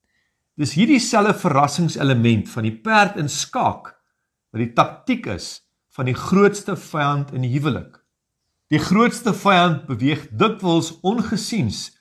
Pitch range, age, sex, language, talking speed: 130-190 Hz, 50-69, male, English, 135 wpm